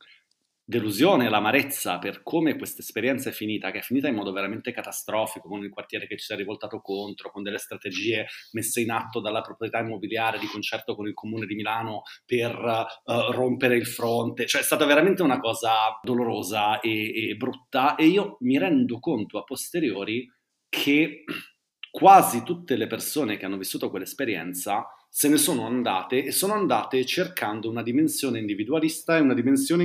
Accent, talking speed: native, 170 wpm